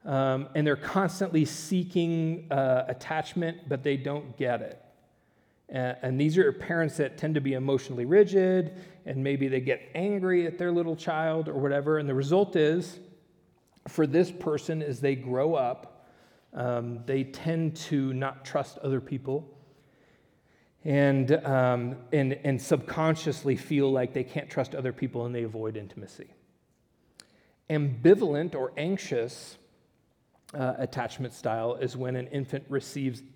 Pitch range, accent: 125-155 Hz, American